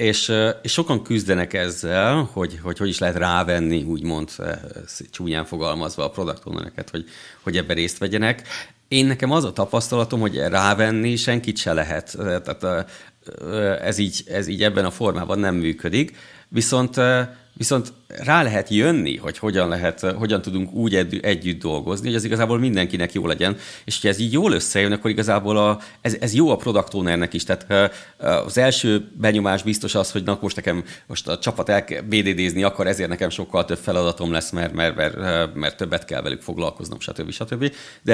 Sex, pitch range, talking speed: male, 90-110 Hz, 170 wpm